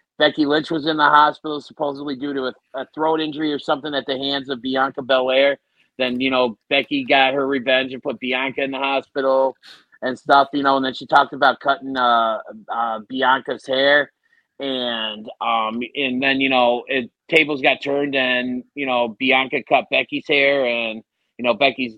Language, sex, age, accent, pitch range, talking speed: English, male, 30-49, American, 125-145 Hz, 185 wpm